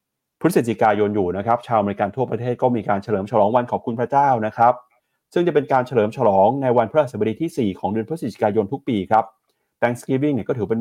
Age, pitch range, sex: 30-49, 105-125 Hz, male